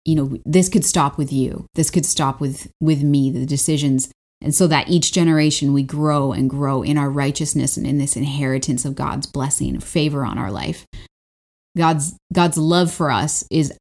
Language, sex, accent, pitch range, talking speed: English, female, American, 135-160 Hz, 195 wpm